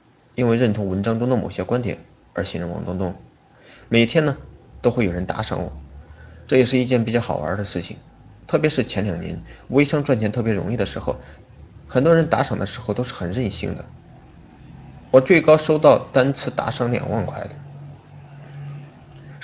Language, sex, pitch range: Chinese, male, 105-135 Hz